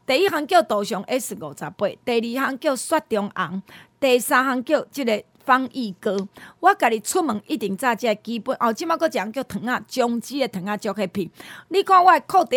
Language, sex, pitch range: Chinese, female, 210-300 Hz